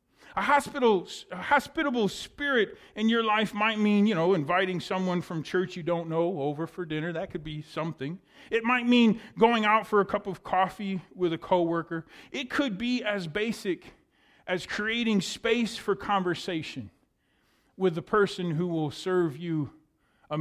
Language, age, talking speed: English, 40-59, 170 wpm